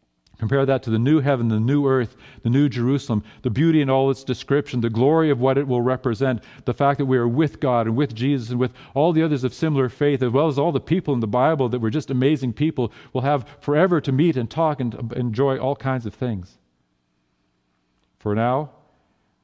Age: 40-59